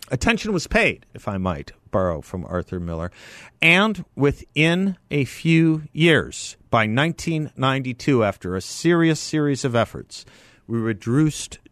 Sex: male